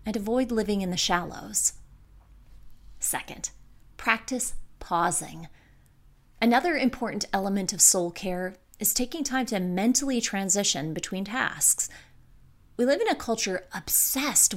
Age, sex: 30-49, female